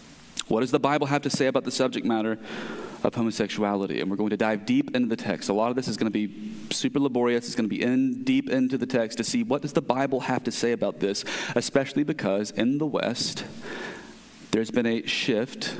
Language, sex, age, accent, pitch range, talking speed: English, male, 30-49, American, 105-135 Hz, 230 wpm